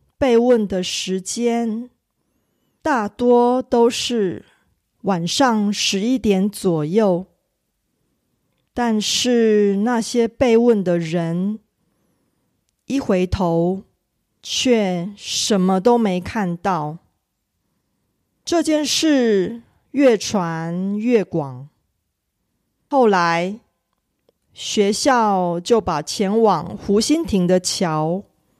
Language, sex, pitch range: Korean, female, 180-235 Hz